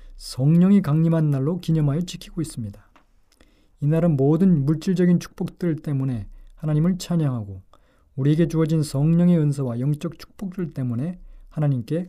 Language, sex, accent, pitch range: Korean, male, native, 130-170 Hz